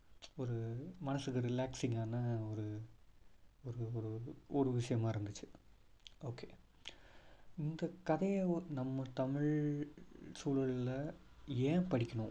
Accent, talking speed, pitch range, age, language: native, 75 wpm, 120-145 Hz, 30-49, Tamil